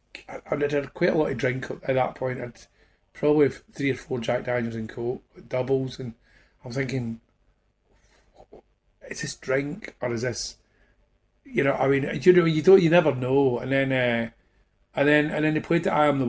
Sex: male